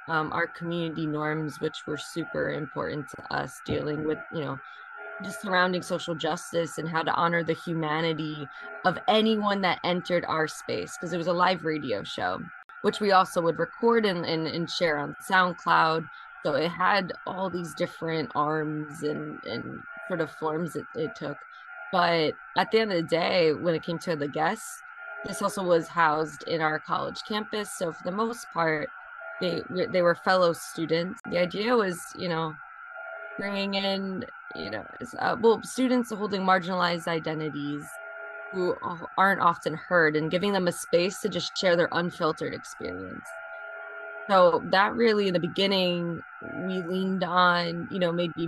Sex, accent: female, American